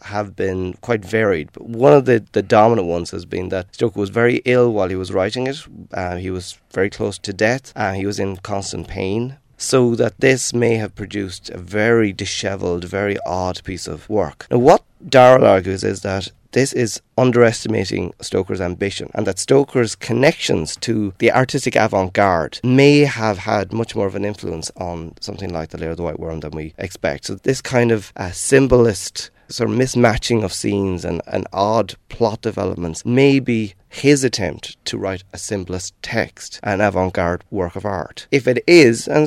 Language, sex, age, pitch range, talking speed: English, male, 30-49, 95-125 Hz, 190 wpm